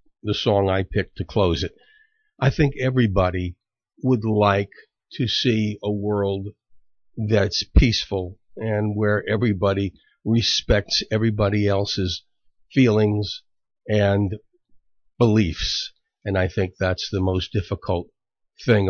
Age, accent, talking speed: 50-69, American, 110 wpm